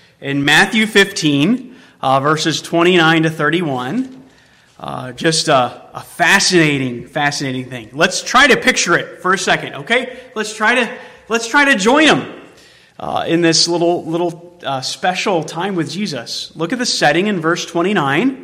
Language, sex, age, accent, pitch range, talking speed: English, male, 30-49, American, 145-185 Hz, 160 wpm